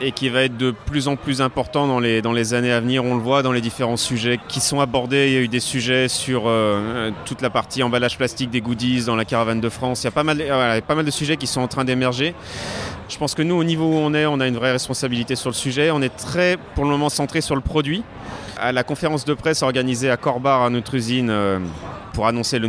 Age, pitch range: 30-49, 115-135 Hz